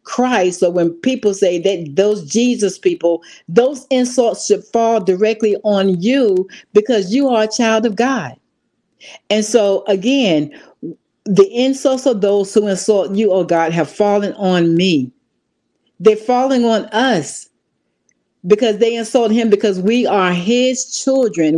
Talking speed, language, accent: 145 wpm, English, American